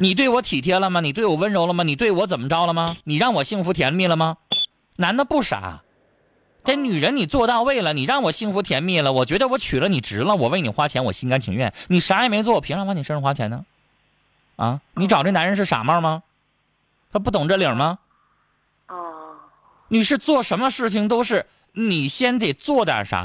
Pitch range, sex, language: 150-220 Hz, male, Chinese